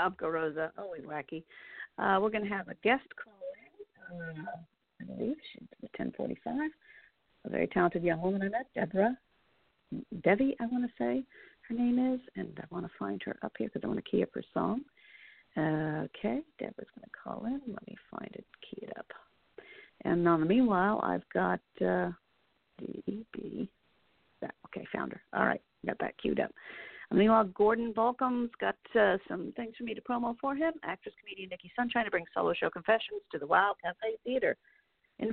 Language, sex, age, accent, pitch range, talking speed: English, female, 50-69, American, 180-250 Hz, 185 wpm